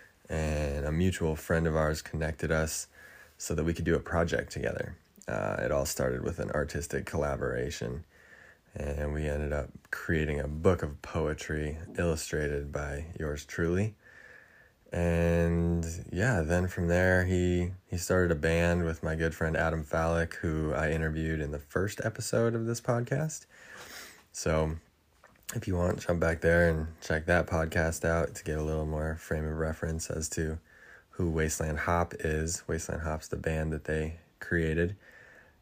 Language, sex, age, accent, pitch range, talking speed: English, male, 20-39, American, 80-90 Hz, 160 wpm